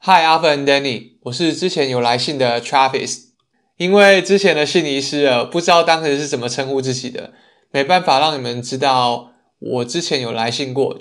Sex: male